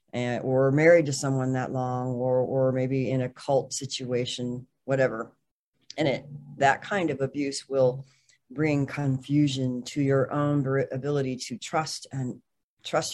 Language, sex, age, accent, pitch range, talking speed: English, female, 40-59, American, 130-145 Hz, 145 wpm